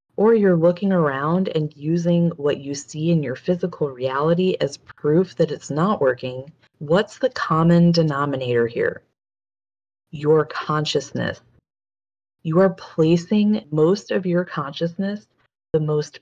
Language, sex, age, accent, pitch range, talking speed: English, female, 30-49, American, 145-180 Hz, 130 wpm